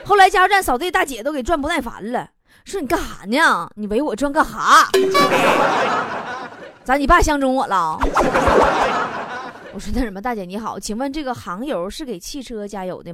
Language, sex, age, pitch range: Chinese, female, 20-39, 250-380 Hz